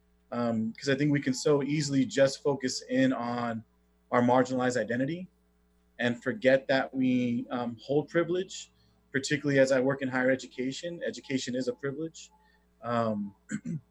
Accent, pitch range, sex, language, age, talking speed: American, 110-135 Hz, male, English, 30-49, 145 wpm